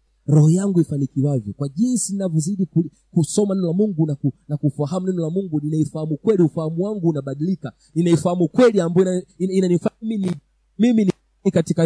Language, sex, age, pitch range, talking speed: Swahili, male, 40-59, 155-205 Hz, 135 wpm